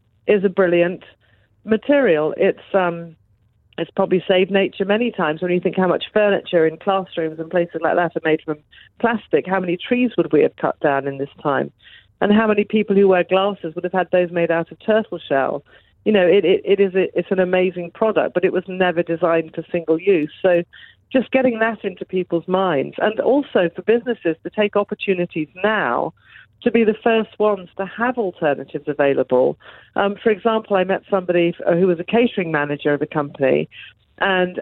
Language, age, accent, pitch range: English, 40-59, British, 165-210 Hz